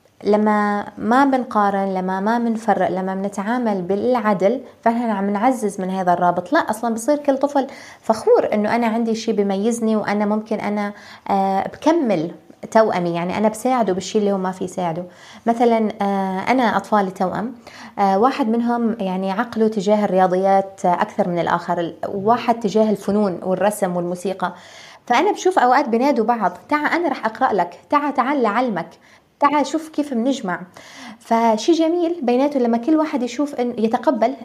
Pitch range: 200-265 Hz